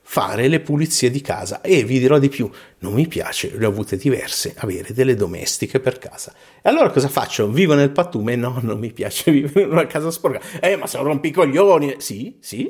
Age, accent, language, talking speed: 50-69, native, Italian, 210 wpm